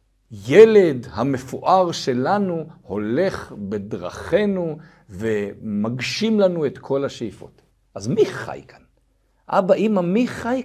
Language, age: Hebrew, 50-69